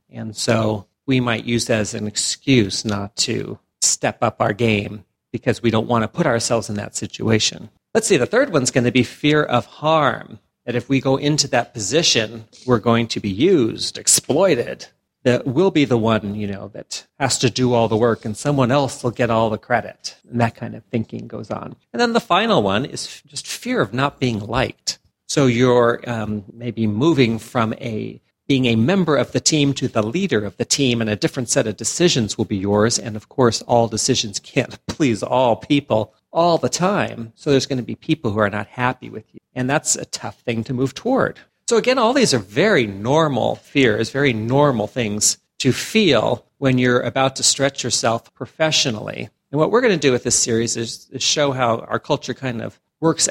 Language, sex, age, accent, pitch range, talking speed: English, male, 40-59, American, 110-140 Hz, 210 wpm